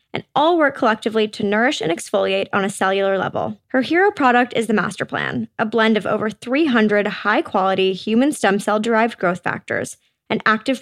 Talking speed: 175 wpm